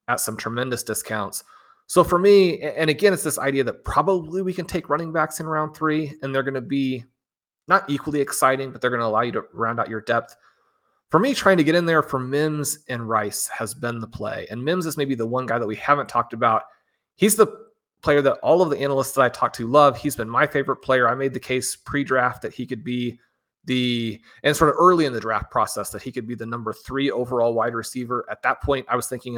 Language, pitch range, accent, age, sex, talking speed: English, 115-145 Hz, American, 30-49, male, 245 wpm